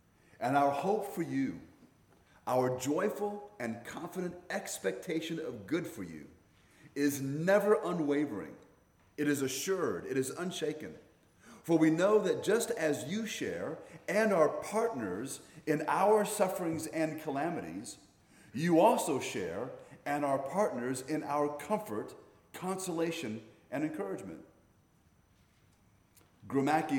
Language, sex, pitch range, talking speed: English, male, 135-190 Hz, 115 wpm